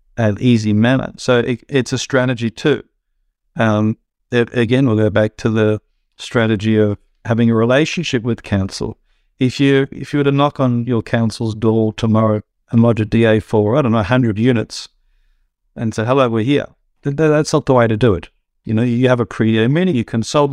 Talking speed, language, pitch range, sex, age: 200 wpm, English, 110-130 Hz, male, 50-69